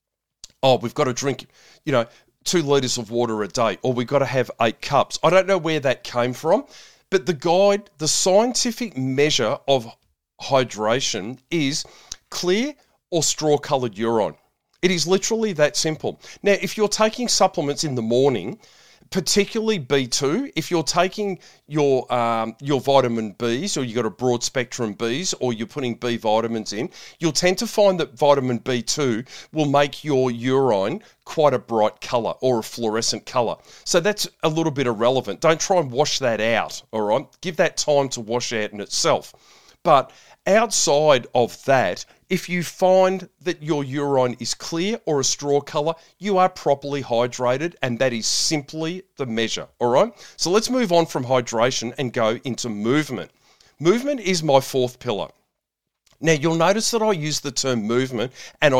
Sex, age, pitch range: male, 40-59, 120-170 Hz